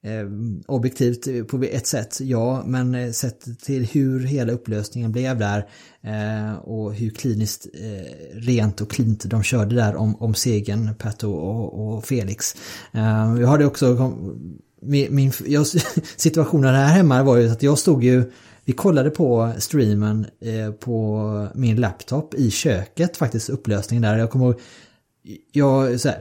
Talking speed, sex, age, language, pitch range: 145 wpm, male, 30-49, Swedish, 110-145 Hz